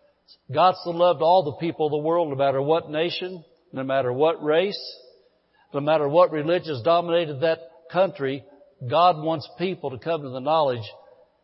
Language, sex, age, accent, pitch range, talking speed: English, male, 60-79, American, 140-180 Hz, 175 wpm